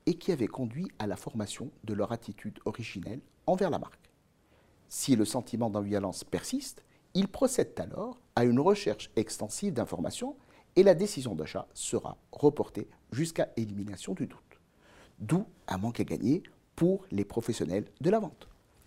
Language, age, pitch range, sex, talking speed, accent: French, 50-69, 105-170 Hz, male, 155 wpm, French